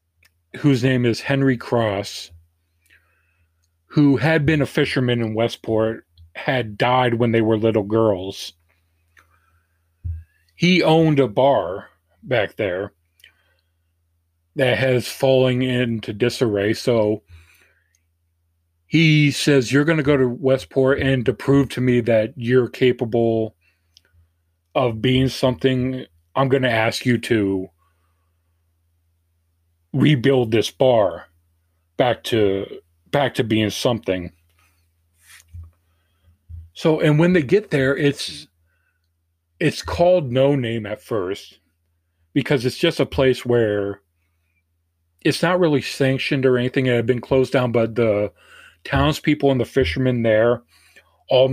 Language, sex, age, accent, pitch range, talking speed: English, male, 40-59, American, 85-130 Hz, 120 wpm